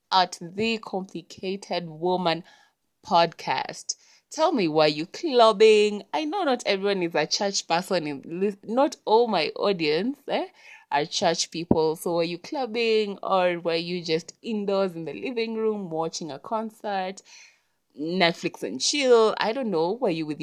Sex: female